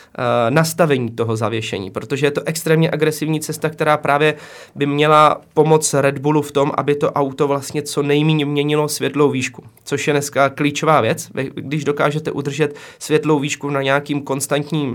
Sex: male